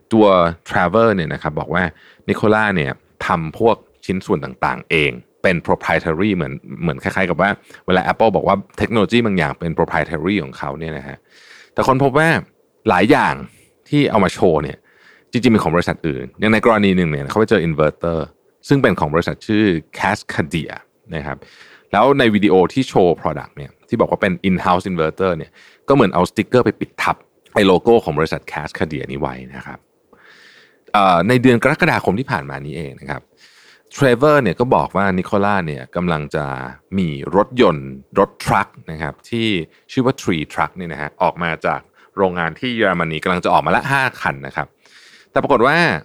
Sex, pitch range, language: male, 80-110 Hz, Thai